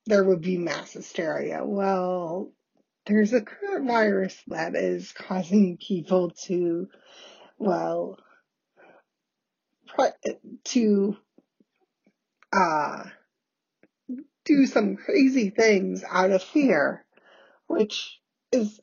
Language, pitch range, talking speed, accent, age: English, 185-250 Hz, 85 wpm, American, 30-49